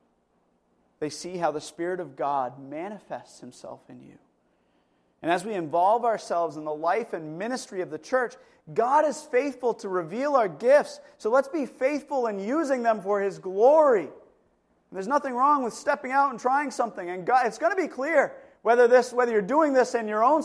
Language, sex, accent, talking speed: English, male, American, 195 wpm